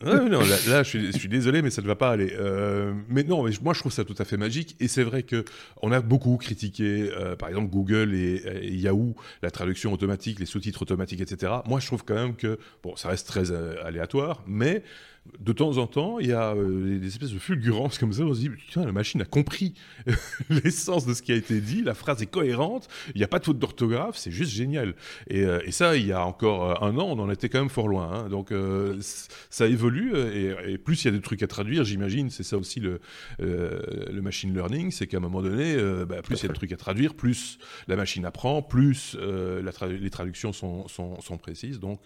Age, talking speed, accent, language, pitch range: 30-49, 255 wpm, French, French, 95-130 Hz